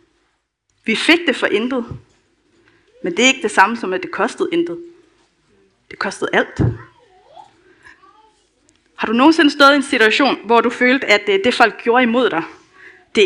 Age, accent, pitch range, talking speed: 30-49, native, 230-355 Hz, 165 wpm